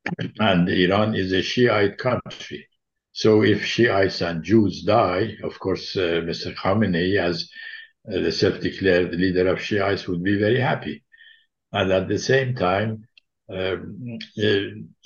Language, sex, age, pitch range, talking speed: English, male, 60-79, 95-120 Hz, 140 wpm